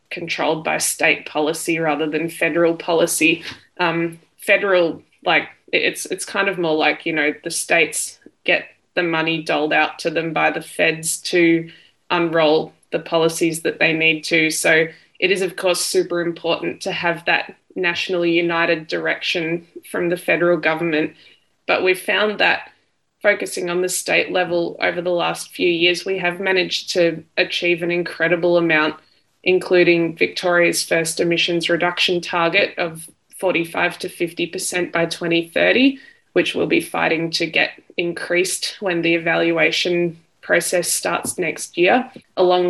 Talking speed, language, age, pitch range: 150 wpm, English, 20-39, 165-180 Hz